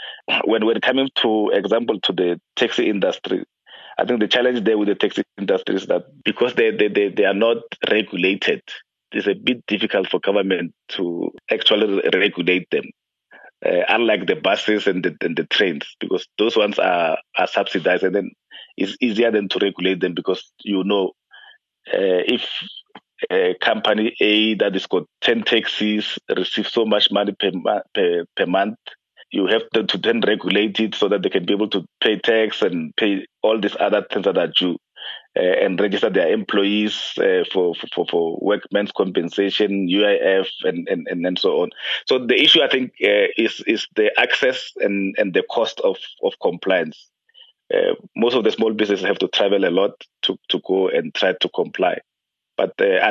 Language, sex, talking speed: English, male, 180 wpm